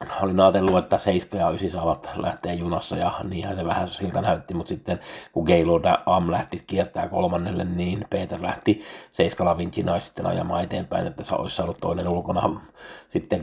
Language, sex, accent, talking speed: Finnish, male, native, 175 wpm